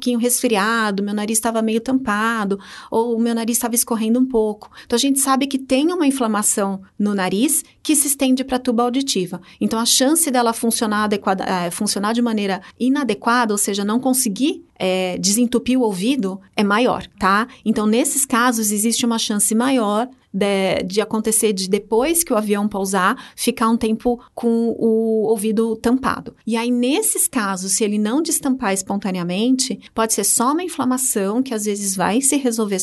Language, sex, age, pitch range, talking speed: Portuguese, female, 30-49, 210-250 Hz, 175 wpm